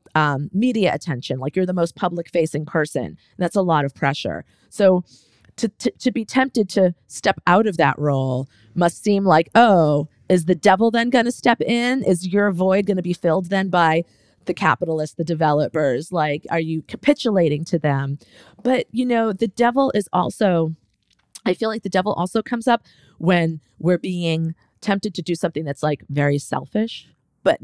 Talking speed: 185 wpm